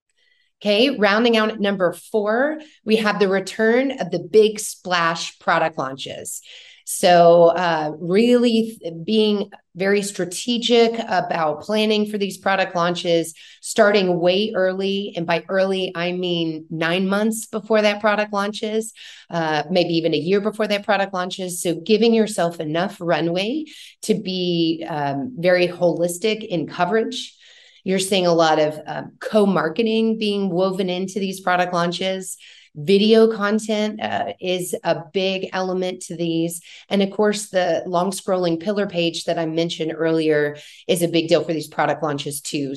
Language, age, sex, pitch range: English, 30-49, female, 165-210 Hz